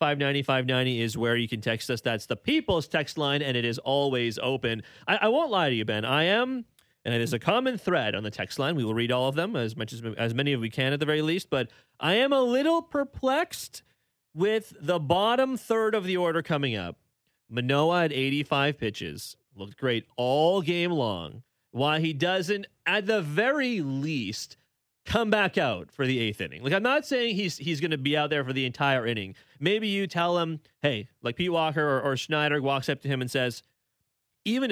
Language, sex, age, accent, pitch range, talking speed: English, male, 30-49, American, 125-175 Hz, 220 wpm